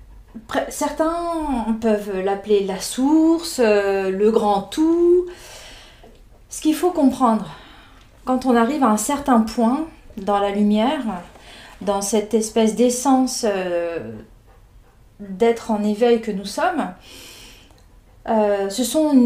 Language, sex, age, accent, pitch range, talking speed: French, female, 30-49, French, 215-280 Hz, 105 wpm